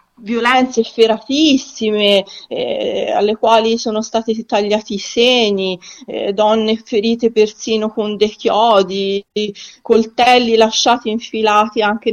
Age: 40-59